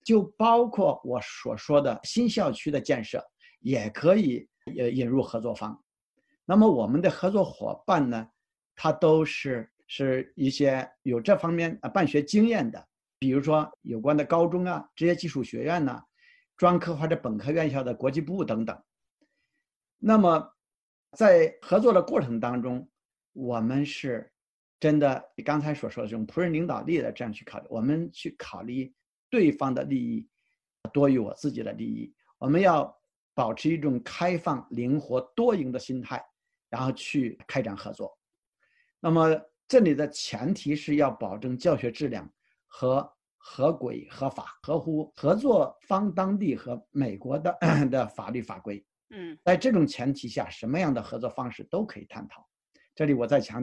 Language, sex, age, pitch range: Chinese, male, 50-69, 125-175 Hz